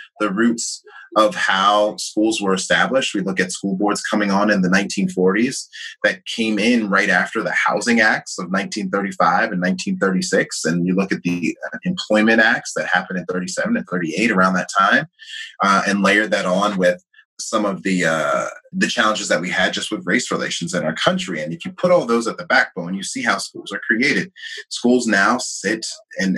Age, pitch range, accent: 30-49, 95-120 Hz, American